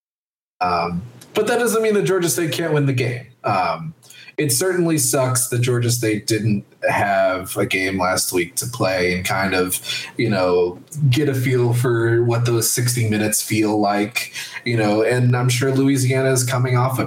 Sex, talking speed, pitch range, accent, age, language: male, 185 wpm, 110-130 Hz, American, 20-39, English